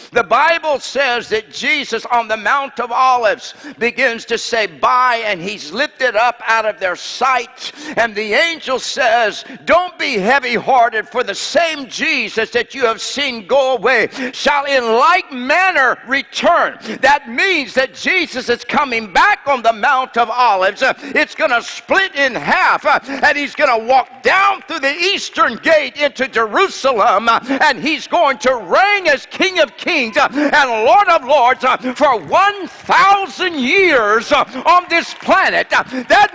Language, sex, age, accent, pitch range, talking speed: English, male, 60-79, American, 245-335 Hz, 165 wpm